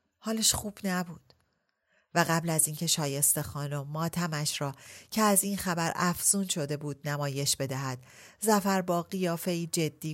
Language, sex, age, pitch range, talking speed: Persian, female, 40-59, 135-180 Hz, 140 wpm